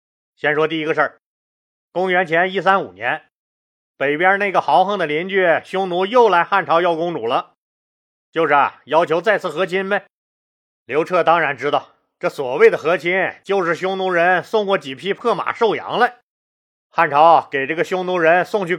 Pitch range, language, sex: 165-215 Hz, Chinese, male